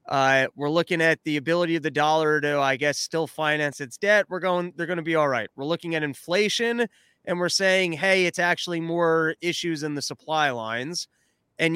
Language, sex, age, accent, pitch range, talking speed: English, male, 30-49, American, 145-175 Hz, 210 wpm